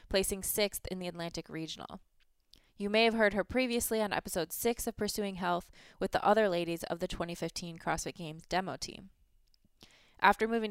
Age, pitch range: 20-39, 175-215 Hz